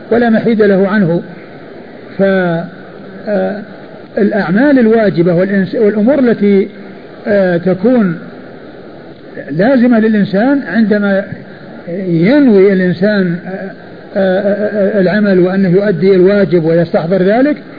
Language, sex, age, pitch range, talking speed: Arabic, male, 50-69, 180-225 Hz, 85 wpm